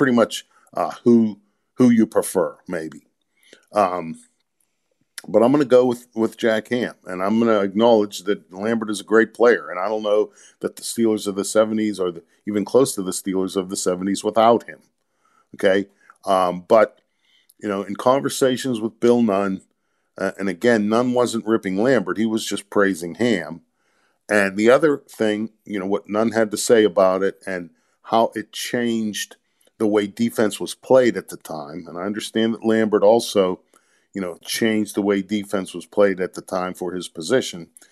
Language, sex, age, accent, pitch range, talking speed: English, male, 50-69, American, 95-115 Hz, 185 wpm